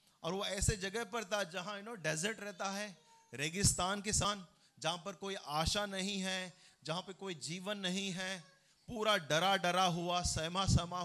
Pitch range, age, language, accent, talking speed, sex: 170-220 Hz, 30-49, Hindi, native, 150 wpm, male